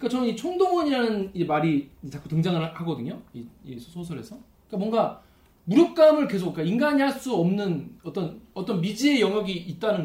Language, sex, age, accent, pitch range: Korean, male, 20-39, native, 155-235 Hz